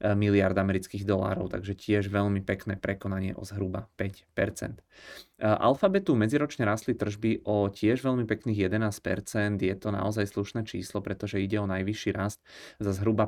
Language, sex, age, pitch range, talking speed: Czech, male, 30-49, 95-105 Hz, 145 wpm